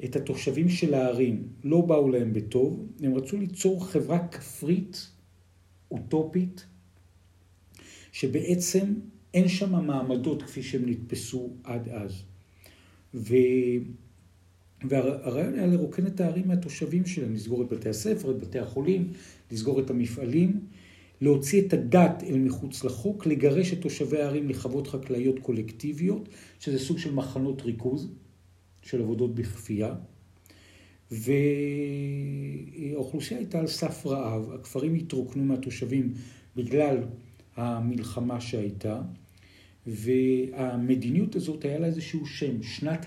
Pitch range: 110-150 Hz